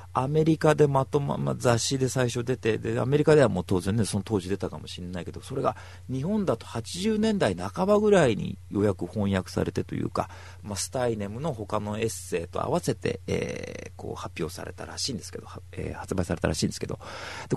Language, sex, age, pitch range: Japanese, male, 40-59, 90-130 Hz